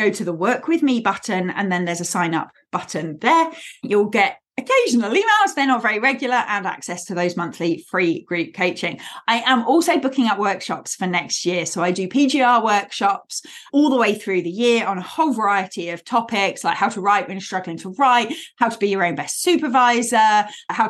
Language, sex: English, female